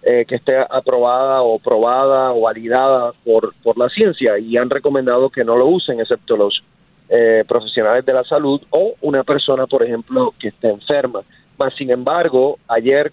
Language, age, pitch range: English, 30-49, 125-160 Hz